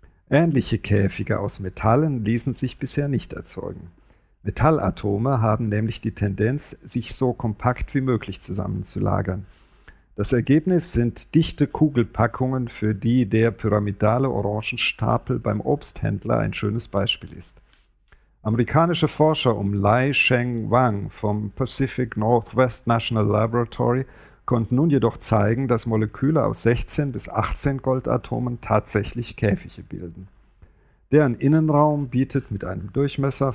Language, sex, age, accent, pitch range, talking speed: German, male, 50-69, German, 105-135 Hz, 120 wpm